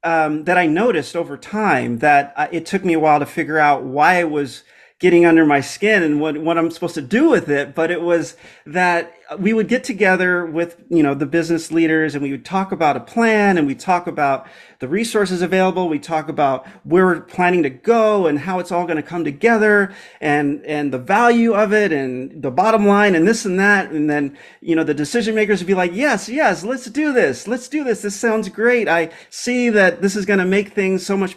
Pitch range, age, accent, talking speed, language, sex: 155-205 Hz, 40-59, American, 235 wpm, English, male